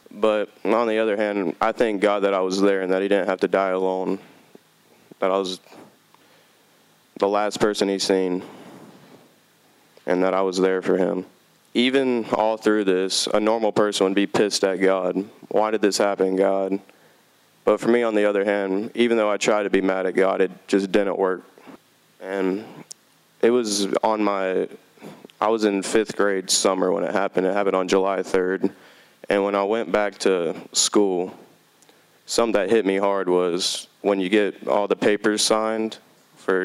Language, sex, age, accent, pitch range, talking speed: English, male, 20-39, American, 95-105 Hz, 185 wpm